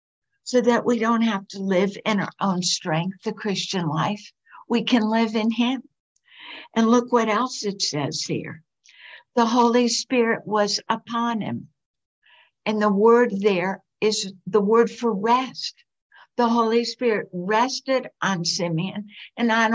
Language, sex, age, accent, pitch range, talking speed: English, female, 60-79, American, 195-235 Hz, 150 wpm